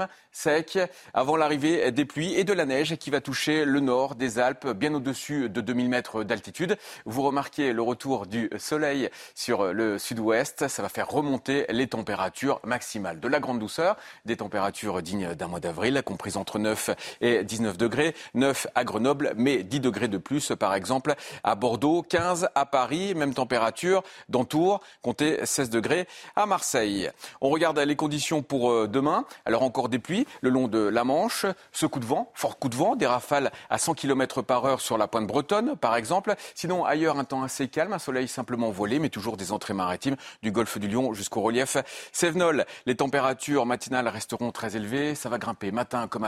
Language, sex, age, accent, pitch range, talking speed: French, male, 40-59, French, 115-145 Hz, 190 wpm